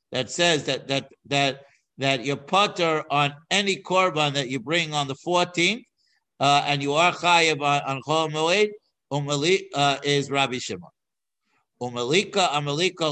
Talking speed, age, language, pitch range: 135 wpm, 60-79, English, 135-165 Hz